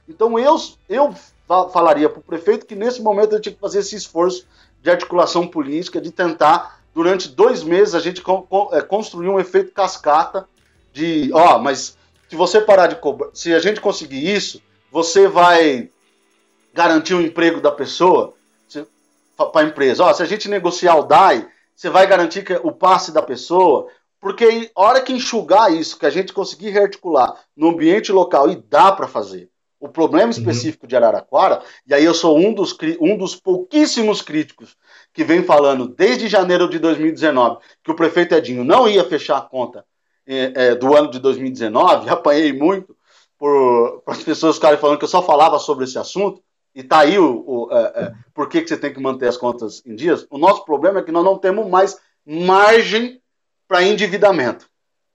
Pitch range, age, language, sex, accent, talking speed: 155-210 Hz, 50-69, Portuguese, male, Brazilian, 185 wpm